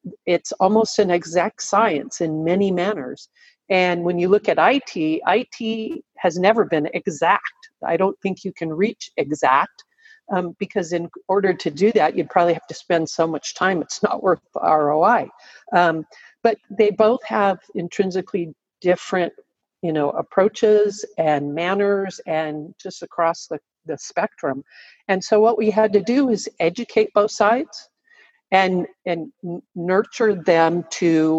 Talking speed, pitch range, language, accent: 150 wpm, 165-210 Hz, English, American